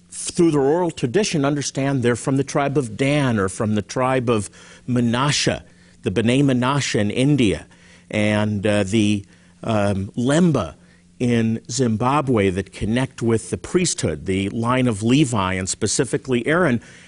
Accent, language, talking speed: American, English, 145 wpm